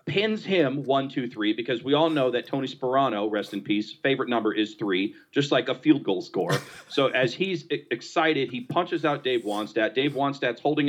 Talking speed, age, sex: 205 wpm, 40-59, male